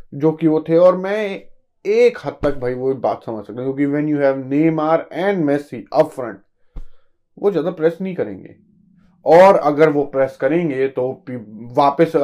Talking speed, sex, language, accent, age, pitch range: 80 wpm, male, Hindi, native, 20-39, 130-160 Hz